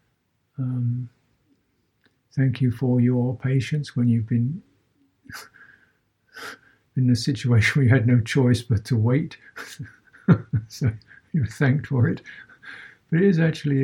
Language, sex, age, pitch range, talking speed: English, male, 60-79, 115-135 Hz, 125 wpm